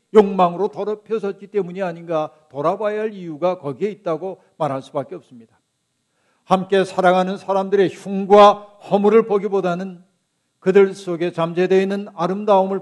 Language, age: Korean, 50-69